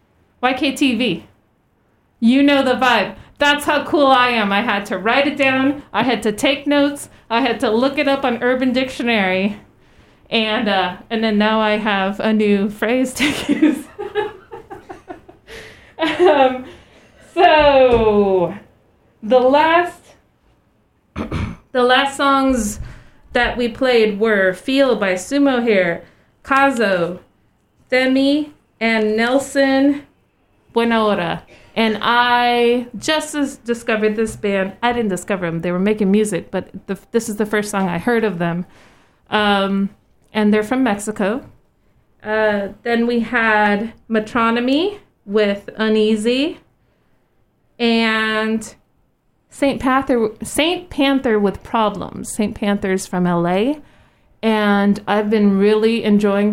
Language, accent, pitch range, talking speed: English, American, 205-265 Hz, 125 wpm